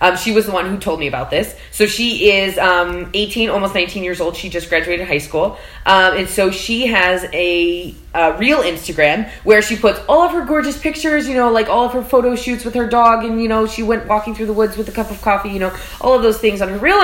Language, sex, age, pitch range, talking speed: English, female, 20-39, 180-230 Hz, 265 wpm